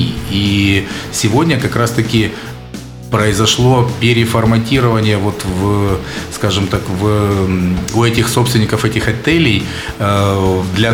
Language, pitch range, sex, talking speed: Russian, 105-120 Hz, male, 70 wpm